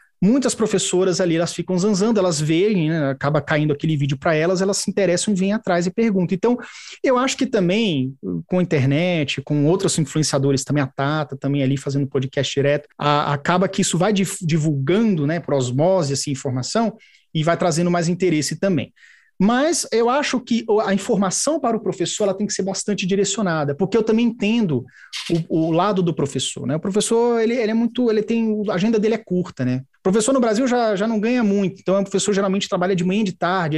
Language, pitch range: Portuguese, 150-205 Hz